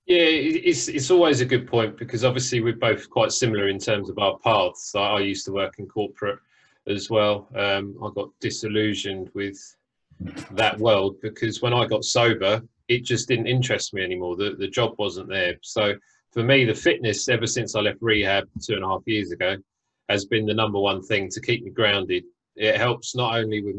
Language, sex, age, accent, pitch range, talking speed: English, male, 30-49, British, 100-120 Hz, 205 wpm